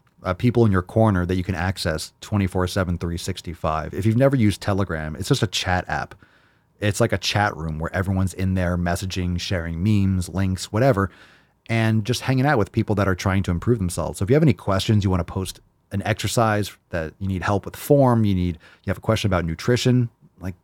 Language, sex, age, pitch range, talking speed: English, male, 30-49, 90-110 Hz, 215 wpm